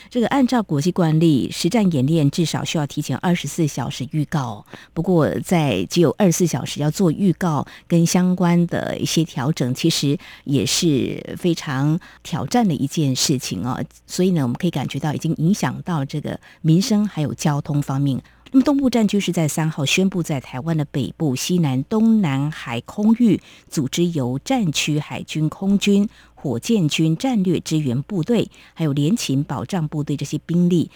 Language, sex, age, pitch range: Chinese, female, 50-69, 140-180 Hz